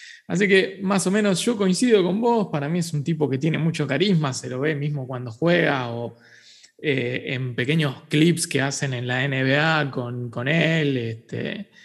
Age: 20-39